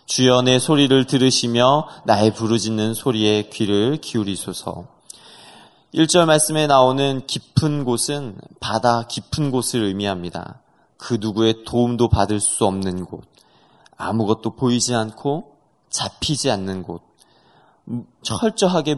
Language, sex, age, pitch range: Korean, male, 20-39, 110-145 Hz